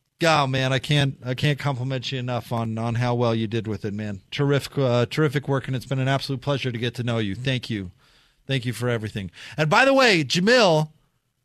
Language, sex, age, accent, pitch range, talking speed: English, male, 40-59, American, 125-150 Hz, 235 wpm